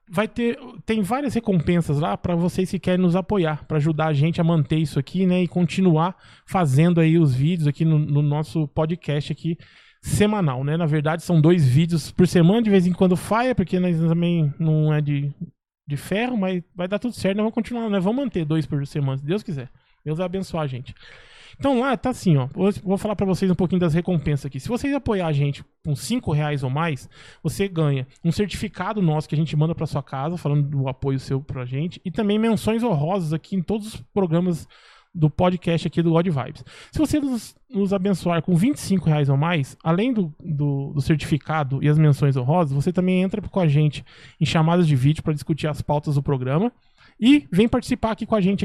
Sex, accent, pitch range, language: male, Brazilian, 150-195 Hz, Portuguese